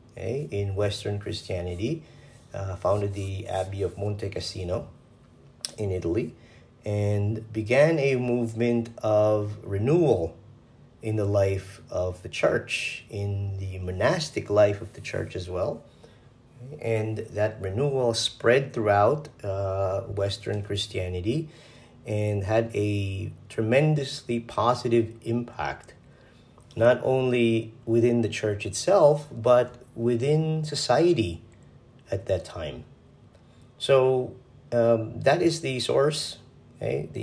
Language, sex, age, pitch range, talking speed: English, male, 40-59, 100-125 Hz, 105 wpm